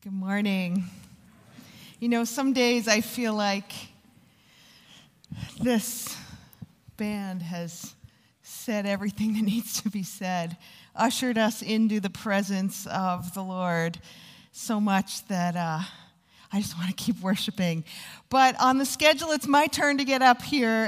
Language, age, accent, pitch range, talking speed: English, 40-59, American, 175-230 Hz, 140 wpm